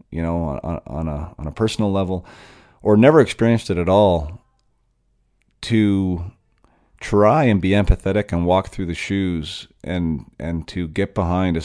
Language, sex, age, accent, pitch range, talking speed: English, male, 40-59, American, 85-100 Hz, 160 wpm